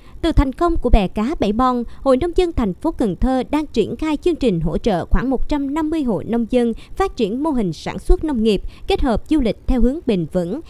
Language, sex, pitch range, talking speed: Vietnamese, male, 205-290 Hz, 240 wpm